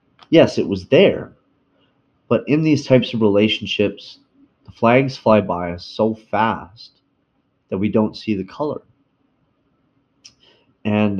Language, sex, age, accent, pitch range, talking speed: English, male, 30-49, American, 95-130 Hz, 130 wpm